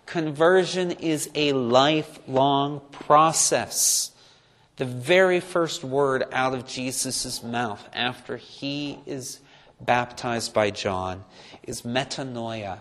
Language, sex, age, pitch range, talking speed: English, male, 40-59, 125-170 Hz, 100 wpm